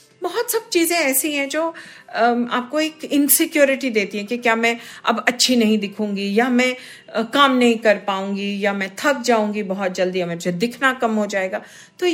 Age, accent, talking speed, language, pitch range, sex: 50-69, native, 185 wpm, Hindi, 185-250 Hz, female